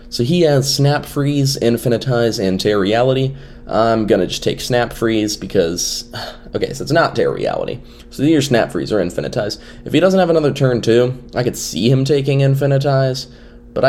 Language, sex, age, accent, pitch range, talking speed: English, male, 20-39, American, 115-140 Hz, 185 wpm